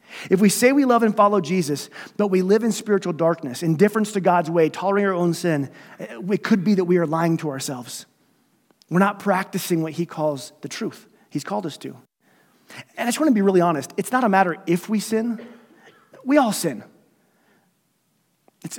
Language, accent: English, American